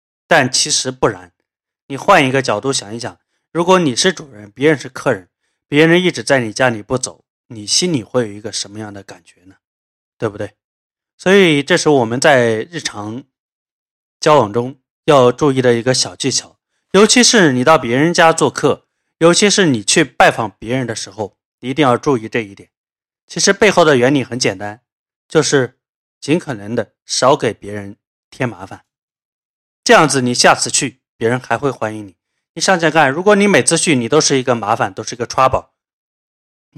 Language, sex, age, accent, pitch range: Chinese, male, 20-39, native, 115-155 Hz